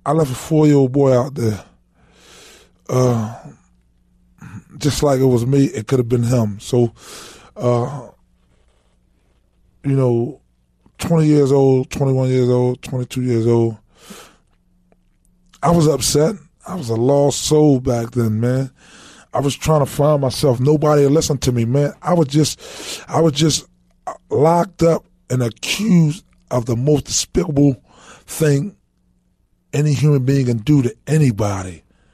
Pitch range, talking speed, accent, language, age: 115-155 Hz, 140 wpm, American, English, 20-39